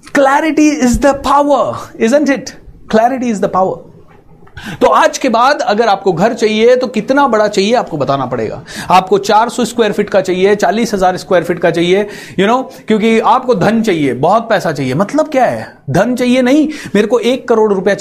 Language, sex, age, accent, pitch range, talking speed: Hindi, male, 30-49, native, 170-220 Hz, 205 wpm